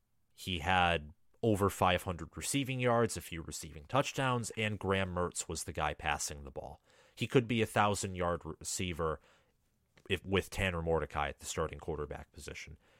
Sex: male